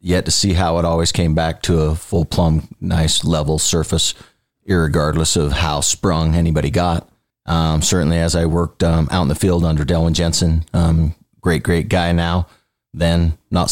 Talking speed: 180 wpm